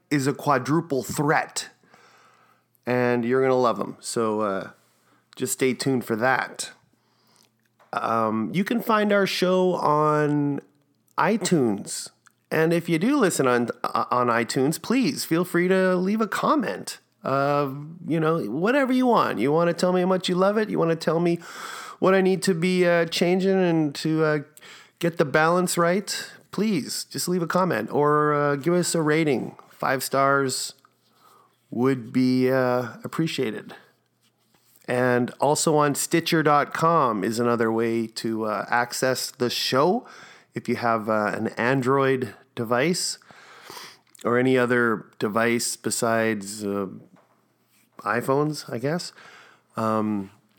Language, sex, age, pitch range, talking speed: English, male, 30-49, 120-170 Hz, 145 wpm